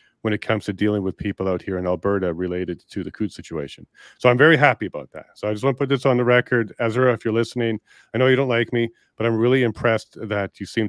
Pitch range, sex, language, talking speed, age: 100-120 Hz, male, English, 270 wpm, 40-59